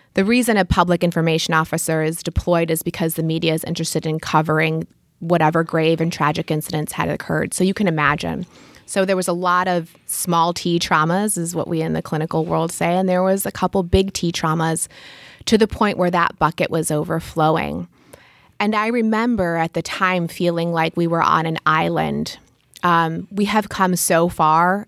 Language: English